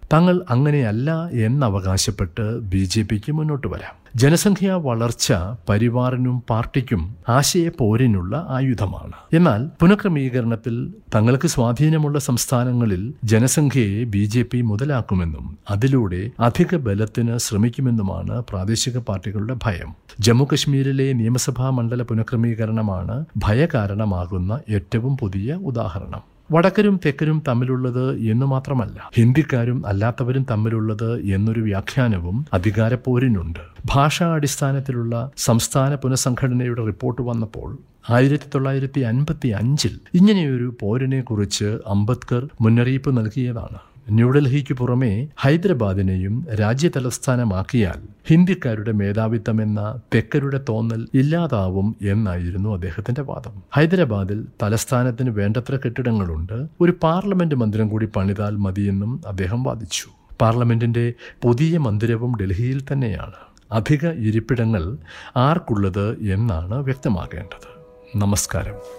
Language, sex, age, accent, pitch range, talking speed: Malayalam, male, 50-69, native, 105-135 Hz, 85 wpm